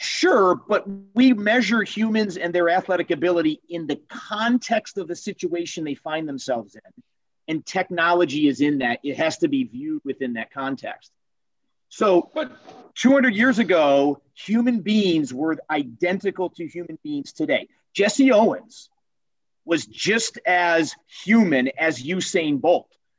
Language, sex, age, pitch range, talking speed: English, male, 40-59, 155-235 Hz, 140 wpm